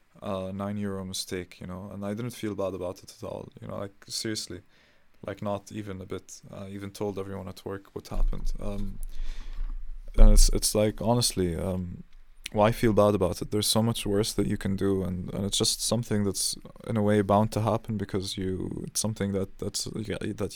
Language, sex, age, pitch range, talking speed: English, male, 20-39, 95-105 Hz, 205 wpm